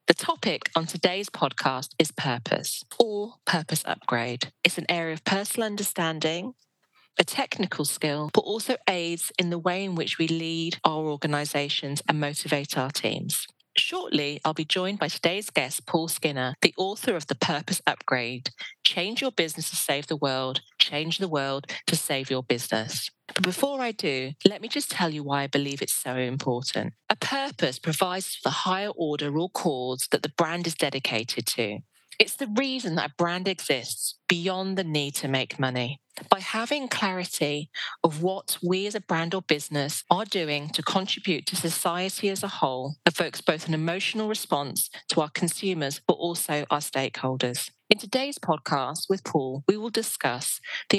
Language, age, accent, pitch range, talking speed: English, 40-59, British, 145-195 Hz, 175 wpm